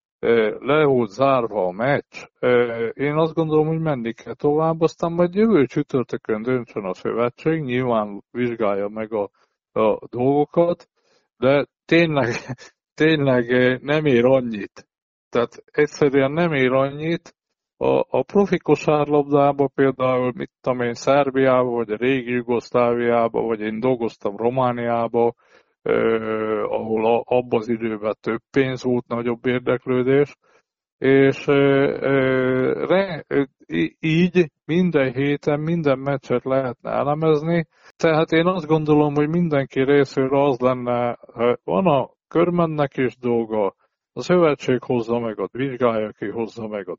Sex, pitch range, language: male, 120-150 Hz, Hungarian